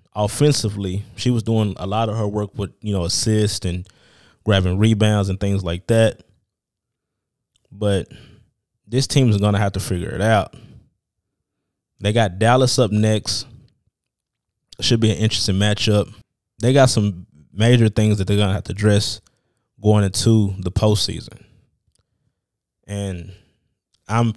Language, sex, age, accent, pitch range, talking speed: English, male, 20-39, American, 100-115 Hz, 145 wpm